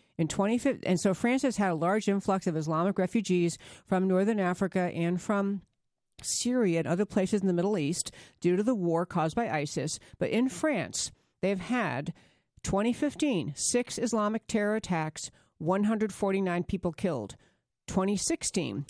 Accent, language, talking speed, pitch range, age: American, English, 150 wpm, 170-225 Hz, 50-69